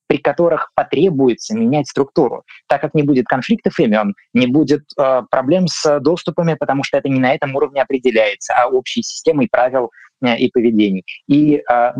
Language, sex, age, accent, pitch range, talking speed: Russian, male, 20-39, native, 130-180 Hz, 170 wpm